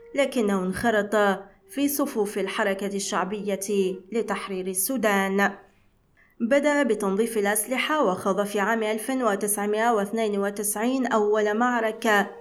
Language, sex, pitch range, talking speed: Arabic, female, 200-240 Hz, 80 wpm